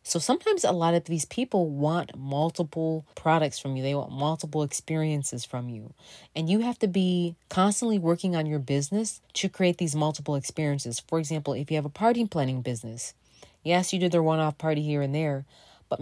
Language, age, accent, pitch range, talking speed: English, 30-49, American, 145-185 Hz, 195 wpm